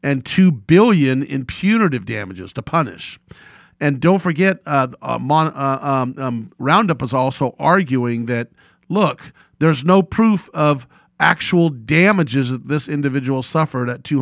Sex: male